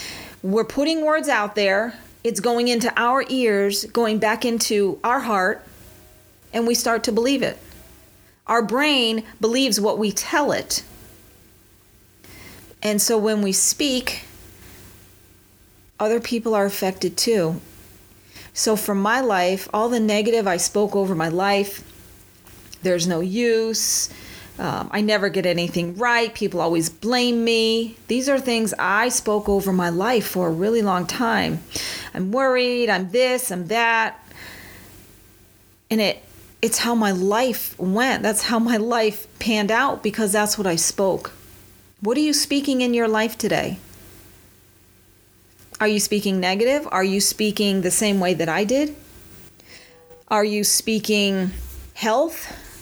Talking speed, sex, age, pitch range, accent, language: 140 wpm, female, 40-59, 160-230 Hz, American, English